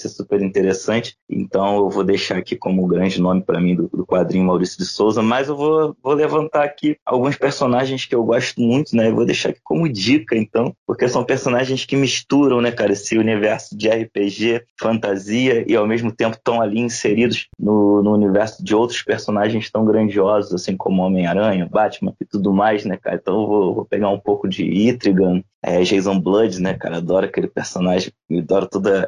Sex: male